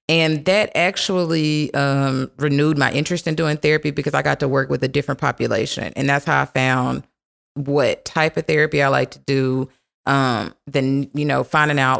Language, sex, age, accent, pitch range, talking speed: English, female, 30-49, American, 135-155 Hz, 190 wpm